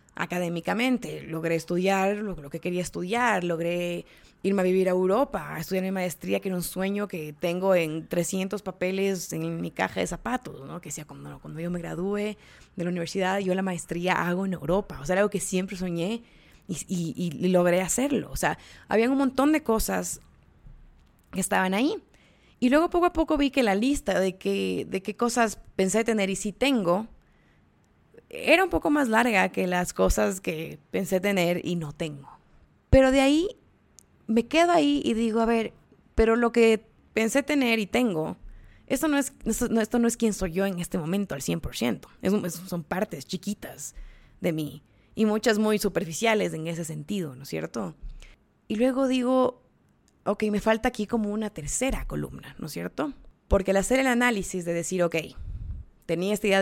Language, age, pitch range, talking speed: Spanish, 20-39, 175-230 Hz, 190 wpm